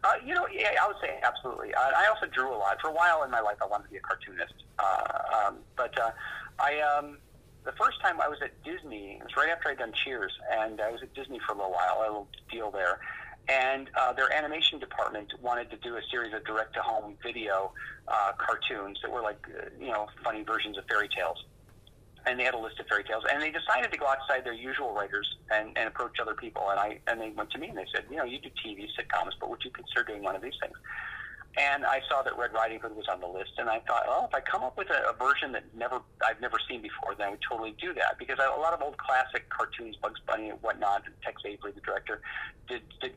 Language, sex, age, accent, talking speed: English, male, 40-59, American, 260 wpm